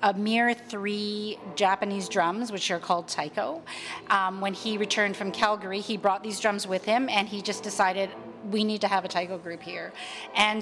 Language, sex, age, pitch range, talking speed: English, female, 40-59, 190-225 Hz, 190 wpm